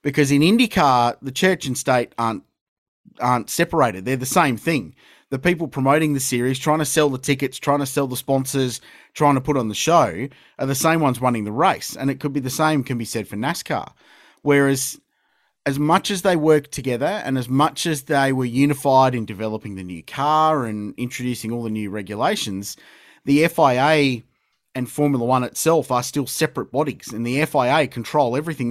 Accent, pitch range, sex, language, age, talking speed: Australian, 120-155 Hz, male, English, 30-49, 195 wpm